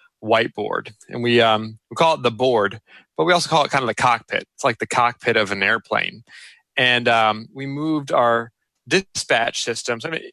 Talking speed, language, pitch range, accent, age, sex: 205 wpm, English, 110-140 Hz, American, 30-49, male